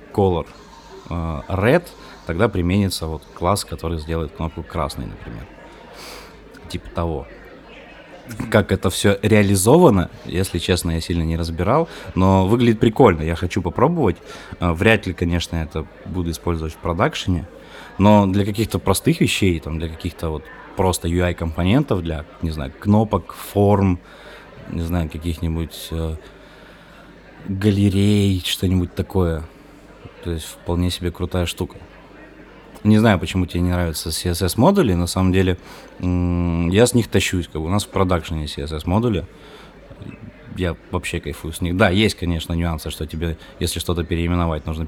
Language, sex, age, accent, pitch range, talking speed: Russian, male, 20-39, native, 85-100 Hz, 135 wpm